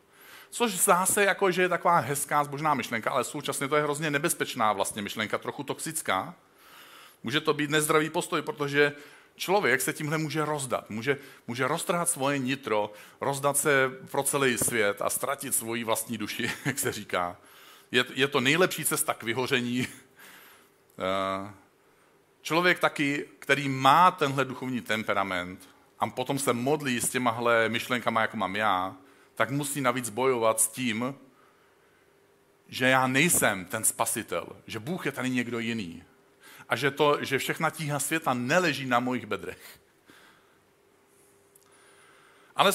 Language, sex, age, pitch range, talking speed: Czech, male, 40-59, 115-155 Hz, 140 wpm